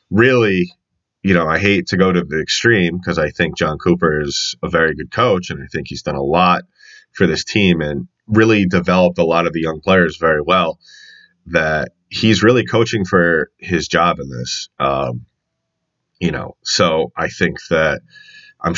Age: 30-49